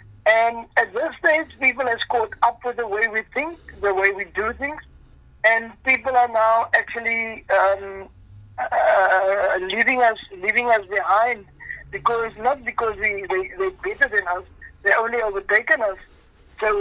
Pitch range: 200-255 Hz